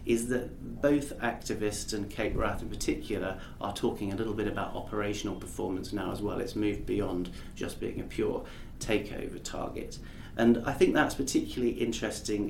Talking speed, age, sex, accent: 170 wpm, 30-49, male, British